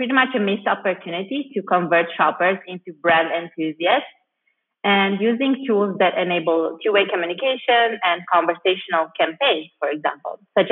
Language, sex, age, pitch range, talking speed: English, female, 30-49, 170-215 Hz, 130 wpm